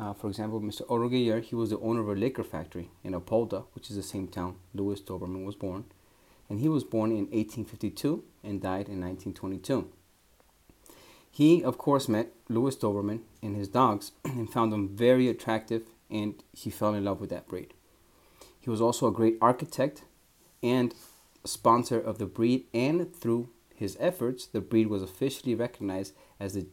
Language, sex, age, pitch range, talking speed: English, male, 30-49, 100-120 Hz, 175 wpm